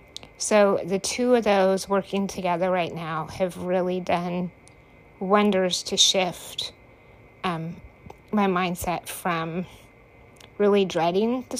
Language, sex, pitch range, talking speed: English, female, 175-200 Hz, 115 wpm